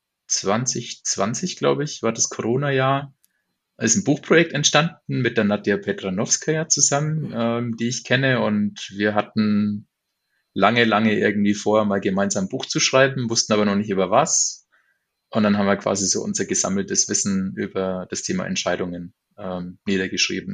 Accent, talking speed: German, 155 wpm